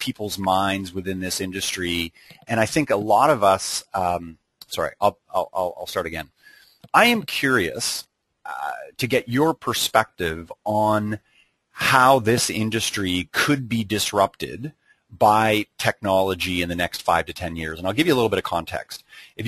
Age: 30-49